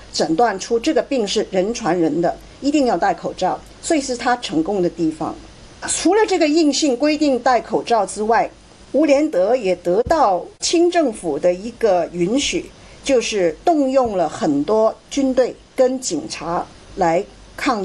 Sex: female